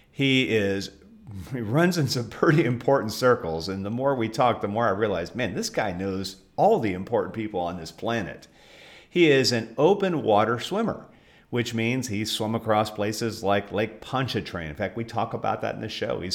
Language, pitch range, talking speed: English, 100-140 Hz, 195 wpm